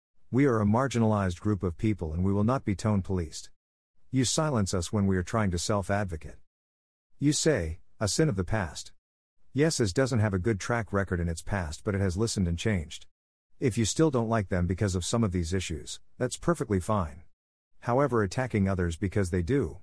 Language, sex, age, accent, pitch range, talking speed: English, male, 50-69, American, 85-115 Hz, 205 wpm